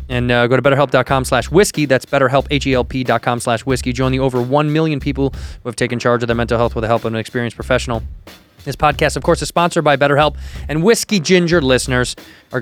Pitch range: 125-155 Hz